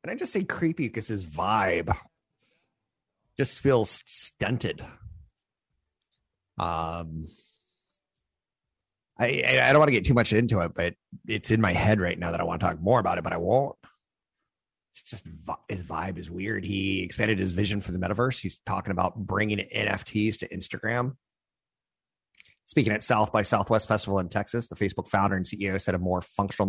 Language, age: English, 30-49